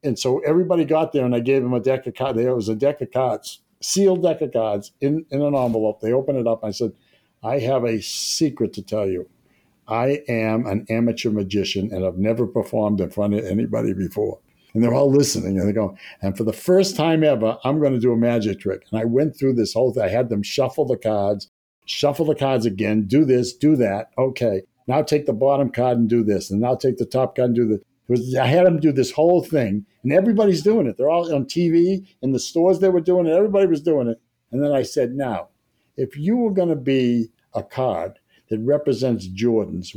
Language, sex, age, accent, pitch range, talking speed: English, male, 60-79, American, 110-145 Hz, 235 wpm